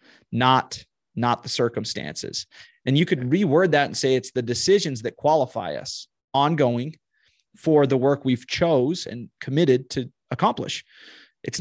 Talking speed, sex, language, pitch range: 145 wpm, male, English, 120-150 Hz